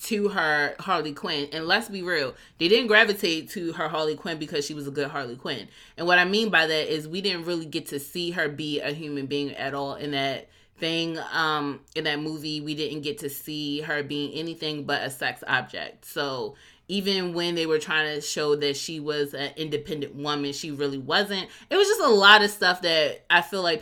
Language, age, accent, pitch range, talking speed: English, 20-39, American, 145-190 Hz, 225 wpm